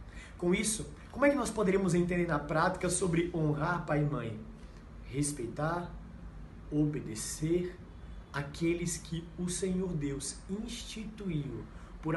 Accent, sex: Brazilian, male